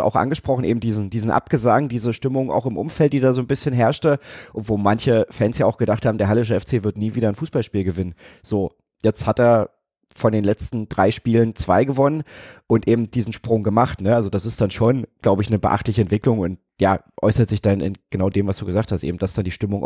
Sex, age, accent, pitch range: male, 30-49, German, 110-140 Hz